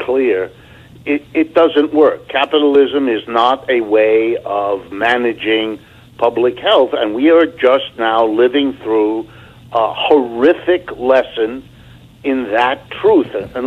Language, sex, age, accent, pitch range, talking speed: English, male, 60-79, American, 125-155 Hz, 125 wpm